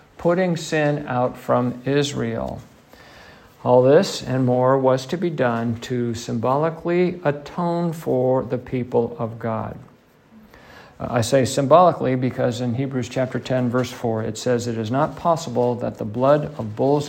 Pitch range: 120-140 Hz